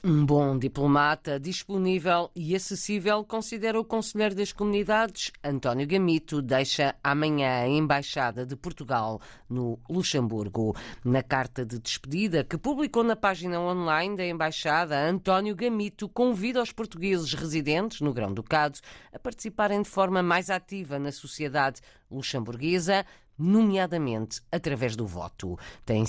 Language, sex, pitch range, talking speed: Portuguese, female, 135-190 Hz, 125 wpm